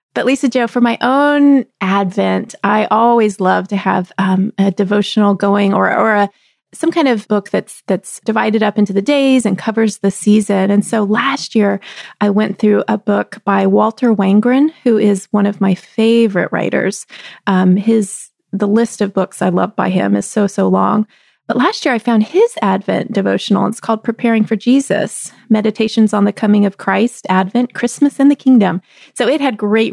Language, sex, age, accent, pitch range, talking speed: English, female, 30-49, American, 195-230 Hz, 190 wpm